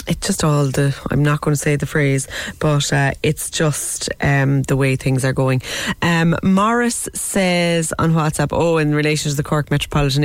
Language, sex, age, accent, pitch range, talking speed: English, female, 20-39, Irish, 130-165 Hz, 195 wpm